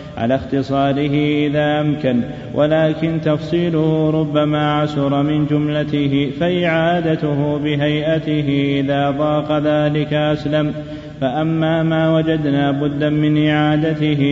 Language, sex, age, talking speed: Arabic, male, 30-49, 90 wpm